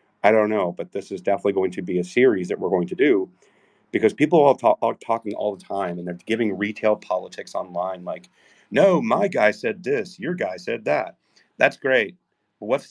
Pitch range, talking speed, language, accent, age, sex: 95-115 Hz, 205 wpm, English, American, 40-59, male